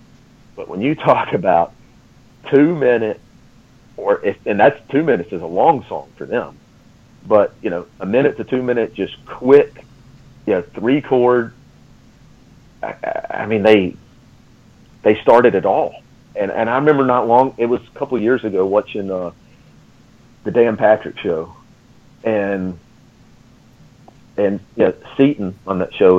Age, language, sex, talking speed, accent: 40-59, English, male, 160 wpm, American